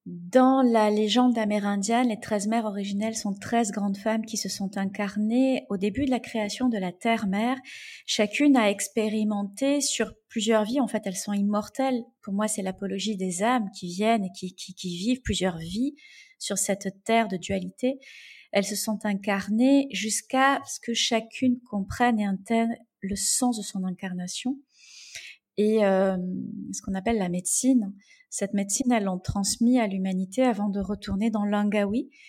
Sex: female